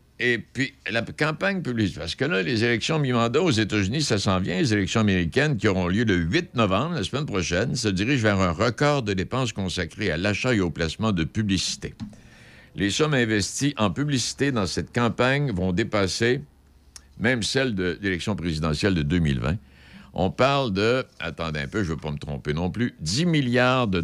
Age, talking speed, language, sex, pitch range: 60-79, 190 wpm, French, male, 75-110 Hz